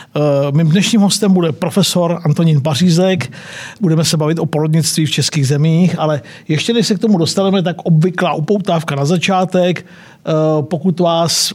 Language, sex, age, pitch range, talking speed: Czech, male, 50-69, 155-190 Hz, 150 wpm